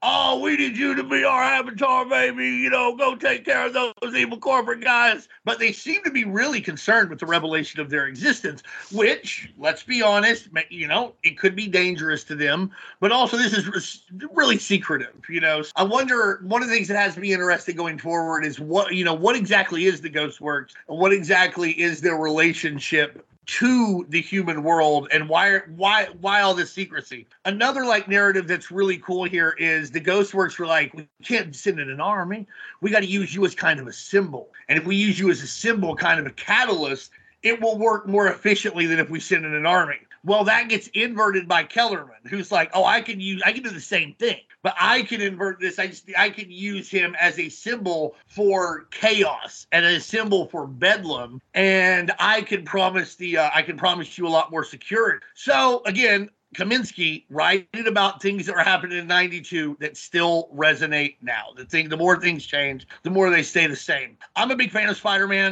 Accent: American